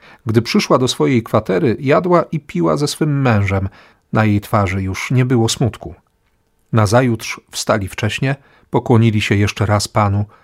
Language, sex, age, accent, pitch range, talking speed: Polish, male, 40-59, native, 100-125 Hz, 150 wpm